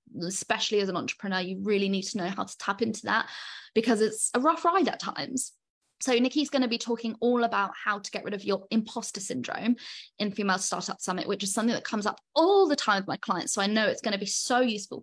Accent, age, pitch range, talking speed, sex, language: British, 10-29, 200-255 Hz, 250 wpm, female, English